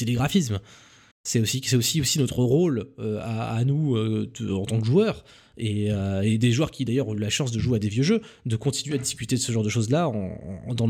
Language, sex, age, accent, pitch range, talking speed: French, male, 20-39, French, 115-150 Hz, 260 wpm